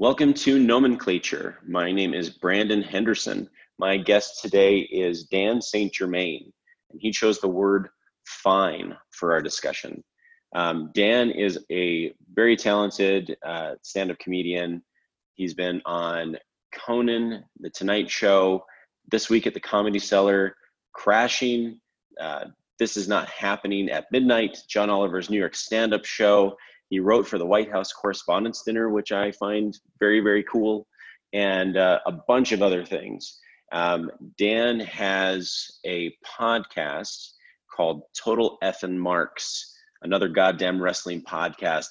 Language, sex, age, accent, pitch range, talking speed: English, male, 30-49, American, 90-110 Hz, 140 wpm